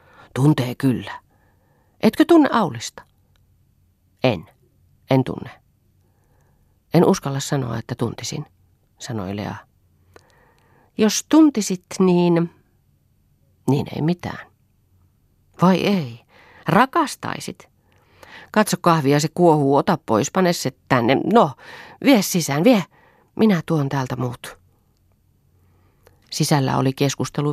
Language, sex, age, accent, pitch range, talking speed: Finnish, female, 40-59, native, 120-160 Hz, 95 wpm